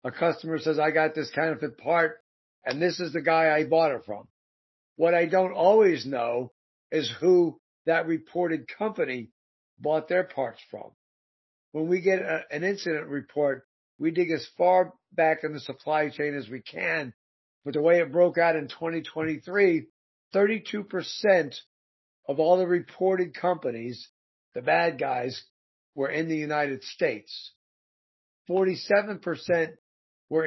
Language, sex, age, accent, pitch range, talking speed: English, male, 50-69, American, 140-165 Hz, 150 wpm